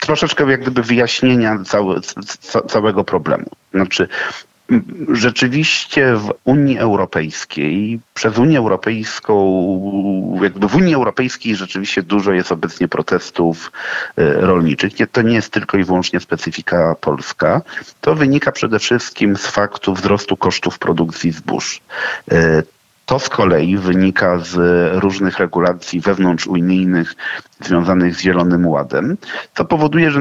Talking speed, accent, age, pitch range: 110 wpm, native, 40-59, 90-120 Hz